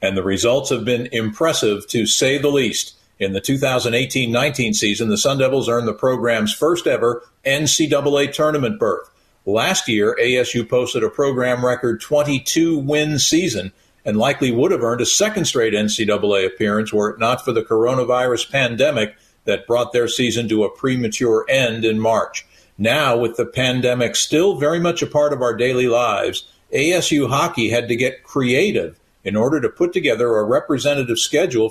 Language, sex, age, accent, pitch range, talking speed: English, male, 50-69, American, 110-140 Hz, 165 wpm